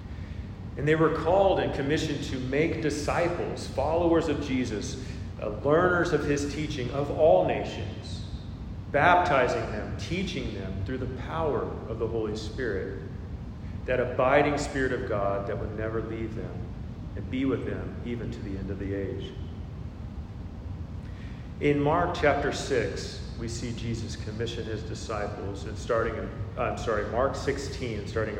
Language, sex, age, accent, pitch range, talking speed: English, male, 40-59, American, 100-130 Hz, 145 wpm